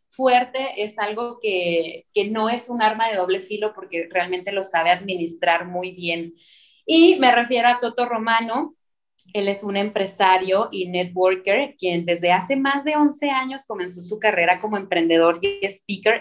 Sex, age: female, 30-49